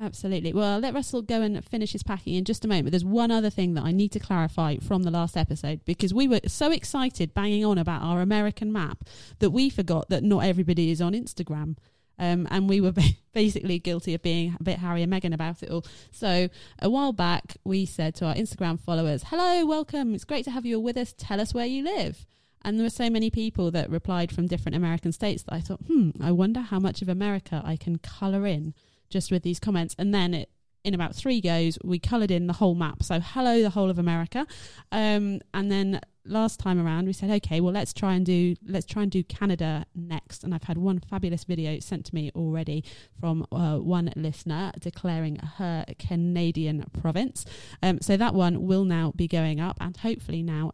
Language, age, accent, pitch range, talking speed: English, 30-49, British, 165-205 Hz, 220 wpm